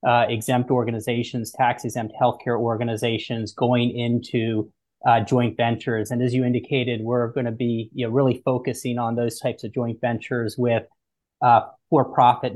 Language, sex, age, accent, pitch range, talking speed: English, male, 30-49, American, 120-130 Hz, 160 wpm